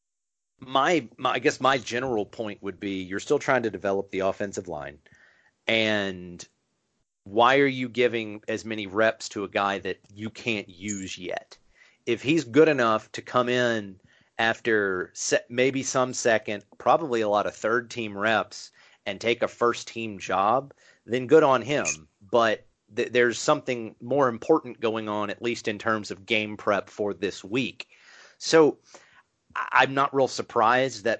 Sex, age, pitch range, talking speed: male, 30-49, 100-125 Hz, 165 wpm